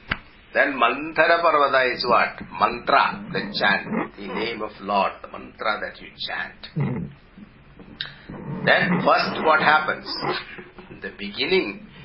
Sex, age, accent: male, 50-69, Indian